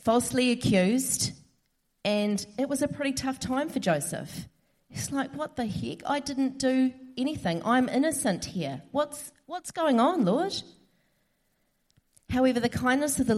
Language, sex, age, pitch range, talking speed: English, female, 30-49, 170-220 Hz, 150 wpm